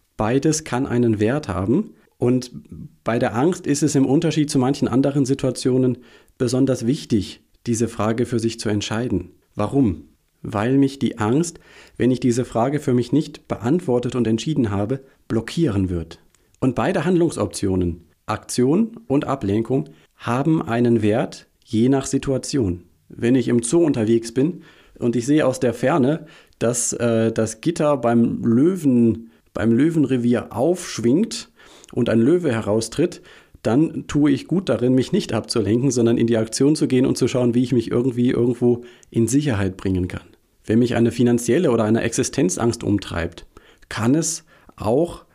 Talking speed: 155 wpm